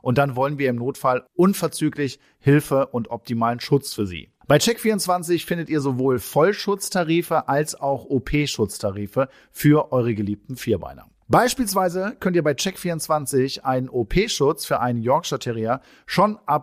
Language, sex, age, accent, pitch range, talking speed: German, male, 40-59, German, 125-175 Hz, 140 wpm